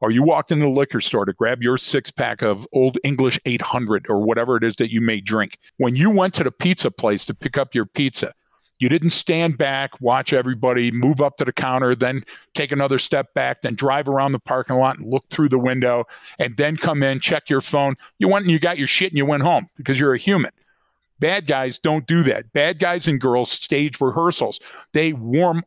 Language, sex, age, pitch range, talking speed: English, male, 50-69, 125-160 Hz, 230 wpm